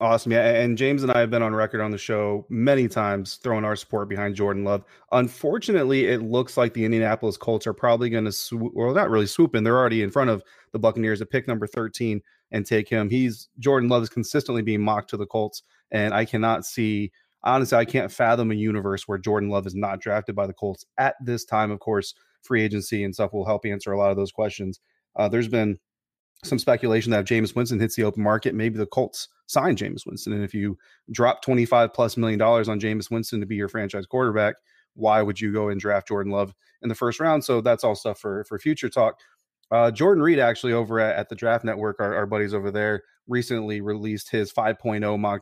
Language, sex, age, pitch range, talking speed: English, male, 30-49, 105-120 Hz, 225 wpm